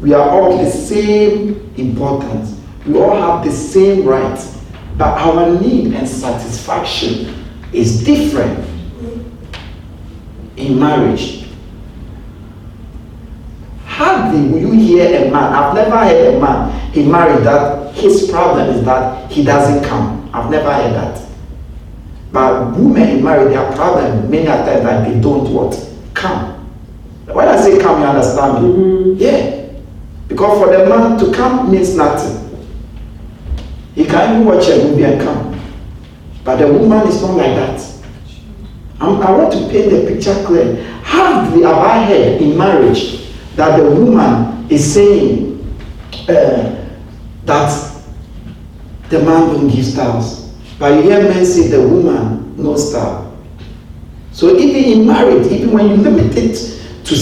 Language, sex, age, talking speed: English, male, 50-69, 140 wpm